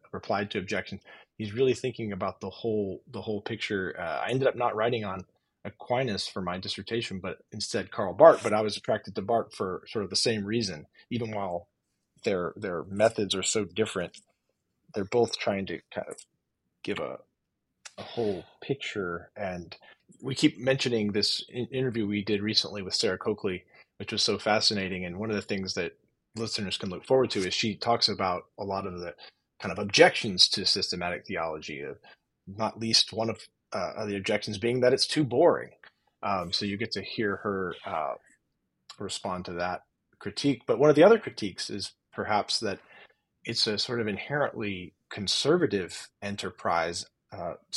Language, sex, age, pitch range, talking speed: English, male, 30-49, 95-115 Hz, 175 wpm